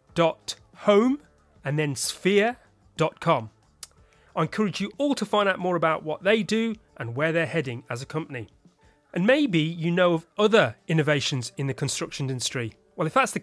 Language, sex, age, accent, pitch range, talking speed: English, male, 30-49, British, 140-195 Hz, 175 wpm